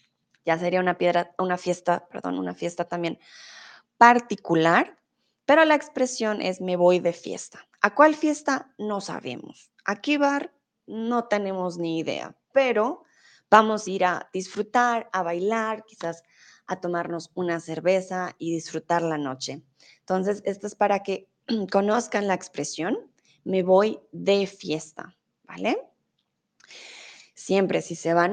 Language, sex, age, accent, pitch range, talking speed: Spanish, female, 20-39, Mexican, 170-220 Hz, 140 wpm